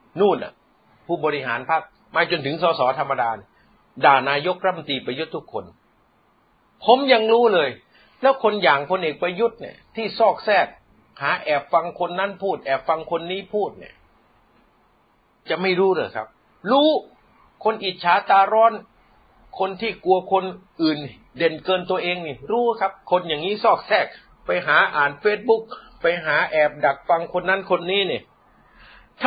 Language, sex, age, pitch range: Thai, male, 60-79, 160-210 Hz